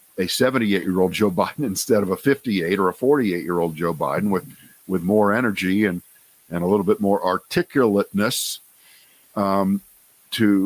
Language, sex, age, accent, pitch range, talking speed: English, male, 50-69, American, 100-115 Hz, 145 wpm